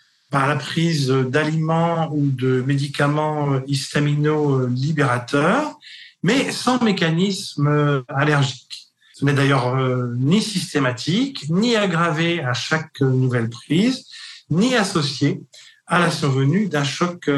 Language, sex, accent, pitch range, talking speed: French, male, French, 140-180 Hz, 105 wpm